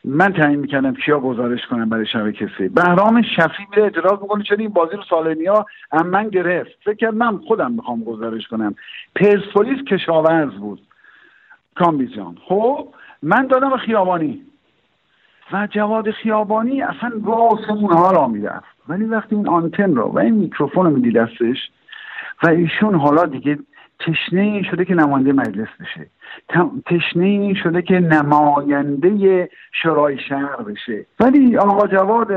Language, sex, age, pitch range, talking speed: English, male, 50-69, 160-225 Hz, 145 wpm